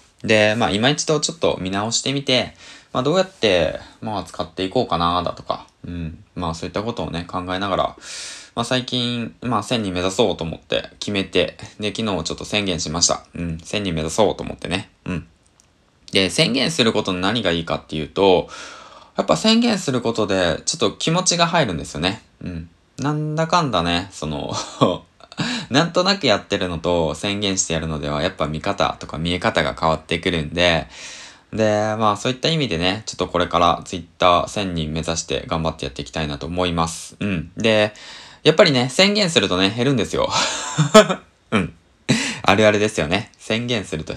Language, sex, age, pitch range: Japanese, male, 20-39, 85-125 Hz